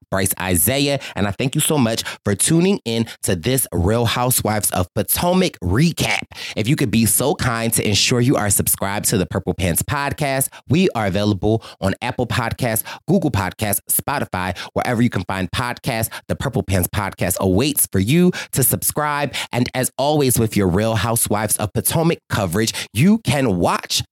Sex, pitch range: male, 105-145 Hz